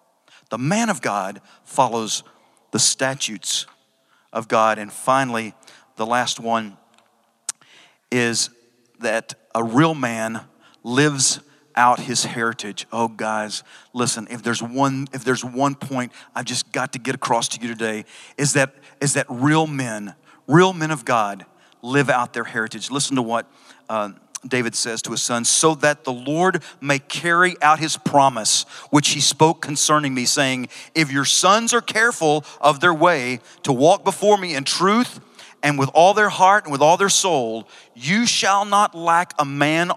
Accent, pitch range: American, 125-170 Hz